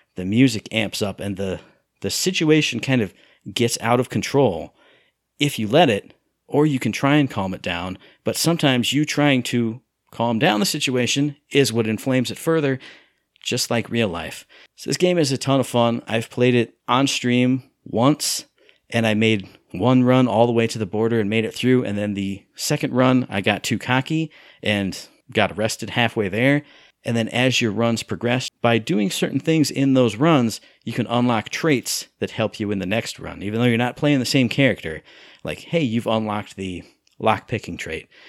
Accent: American